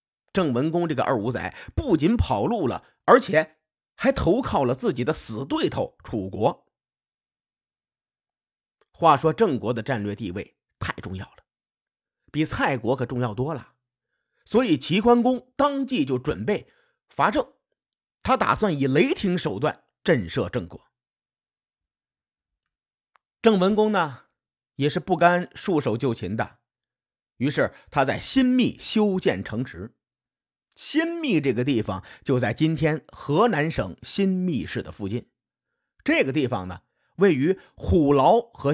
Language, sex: Chinese, male